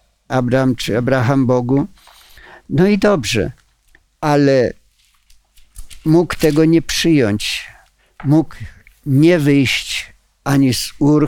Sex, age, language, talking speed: male, 50-69, Polish, 95 wpm